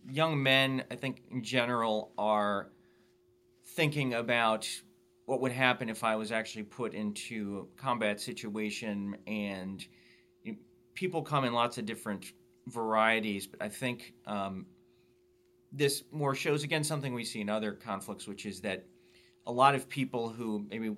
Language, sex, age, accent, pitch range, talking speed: English, male, 30-49, American, 105-130 Hz, 145 wpm